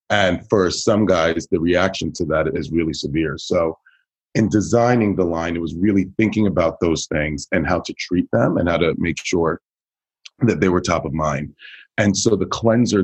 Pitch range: 85-105 Hz